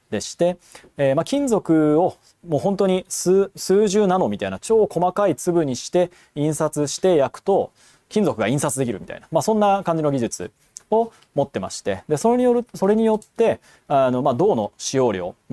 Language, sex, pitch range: Japanese, male, 120-205 Hz